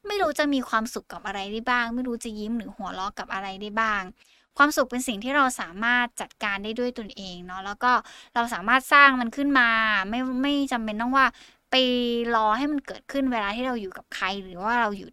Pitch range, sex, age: 215-260 Hz, female, 20-39